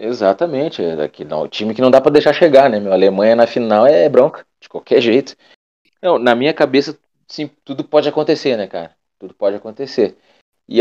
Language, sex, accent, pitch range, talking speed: Portuguese, male, Brazilian, 100-135 Hz, 190 wpm